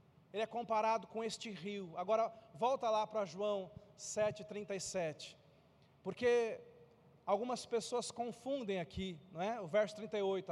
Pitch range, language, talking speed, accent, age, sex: 165-225 Hz, Portuguese, 125 wpm, Brazilian, 40-59, male